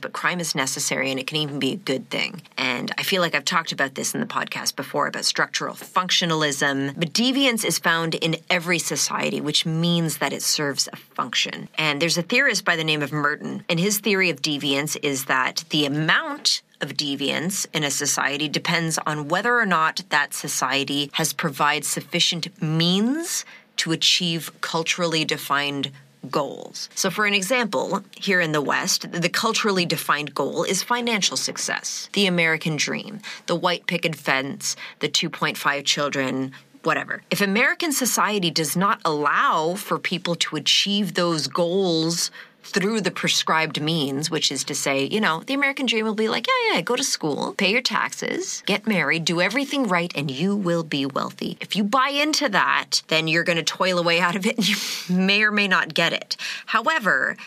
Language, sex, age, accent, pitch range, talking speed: English, female, 30-49, American, 150-205 Hz, 185 wpm